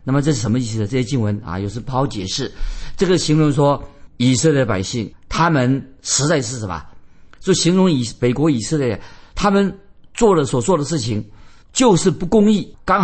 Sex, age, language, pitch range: male, 50-69, Chinese, 115-155 Hz